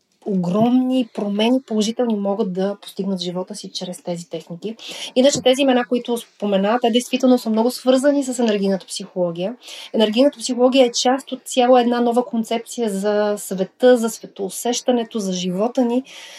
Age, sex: 30-49, female